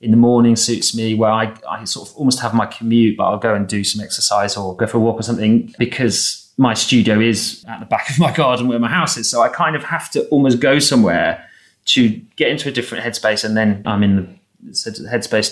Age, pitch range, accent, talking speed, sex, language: 30-49, 110-140 Hz, British, 245 wpm, male, English